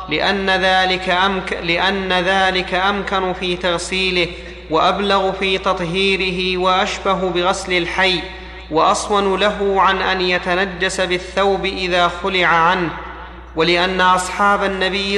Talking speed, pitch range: 90 wpm, 185-195 Hz